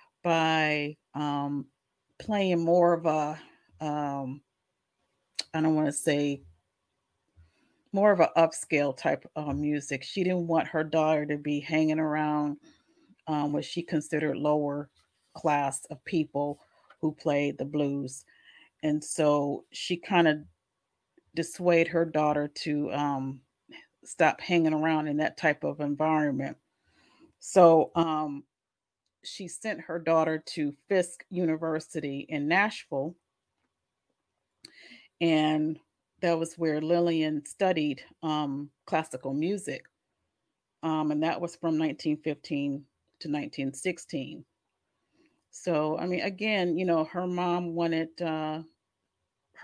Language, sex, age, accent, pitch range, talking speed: English, female, 40-59, American, 145-170 Hz, 115 wpm